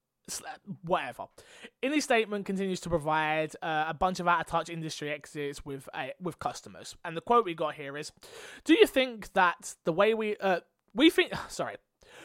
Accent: British